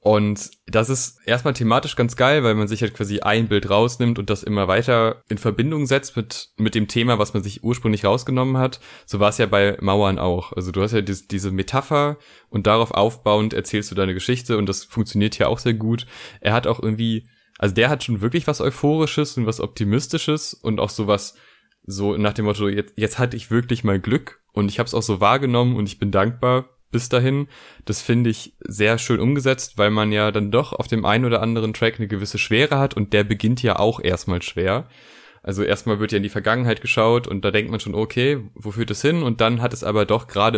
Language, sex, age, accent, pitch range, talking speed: German, male, 10-29, German, 105-120 Hz, 230 wpm